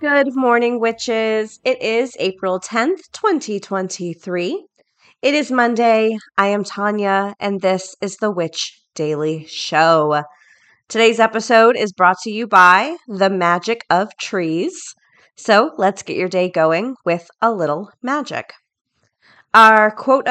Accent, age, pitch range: American, 30-49, 175-235 Hz